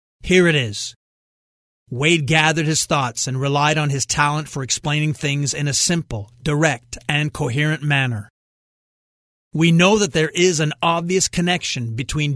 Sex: male